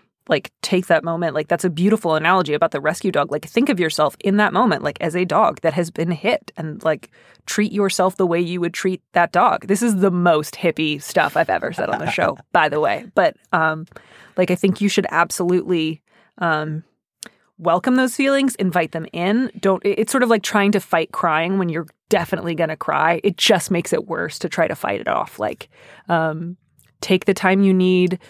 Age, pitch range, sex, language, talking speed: 20-39, 160-190 Hz, female, English, 215 wpm